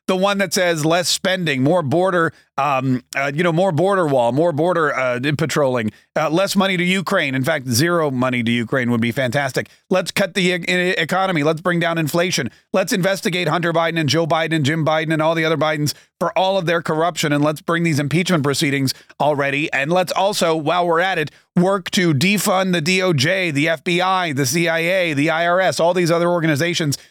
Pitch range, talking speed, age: 150-190 Hz, 200 wpm, 30-49